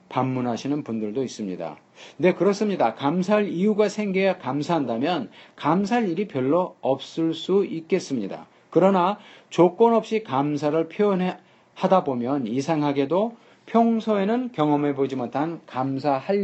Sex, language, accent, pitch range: male, Korean, native, 135-190 Hz